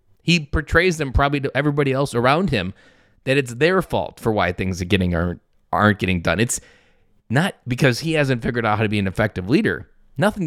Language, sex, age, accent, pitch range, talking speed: English, male, 30-49, American, 105-145 Hz, 205 wpm